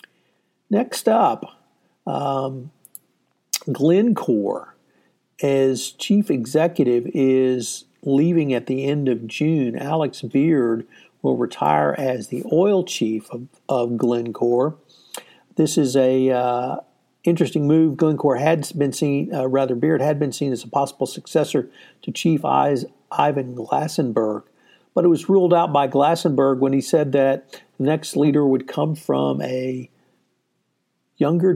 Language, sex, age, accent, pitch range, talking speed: English, male, 50-69, American, 130-160 Hz, 125 wpm